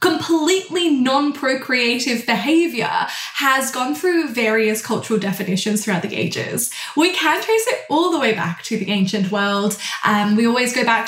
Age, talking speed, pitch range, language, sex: 10-29, 155 wpm, 220-285 Hz, English, female